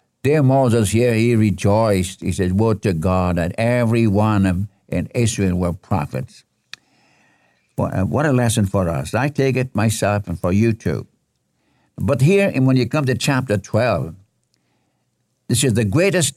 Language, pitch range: English, 95-130 Hz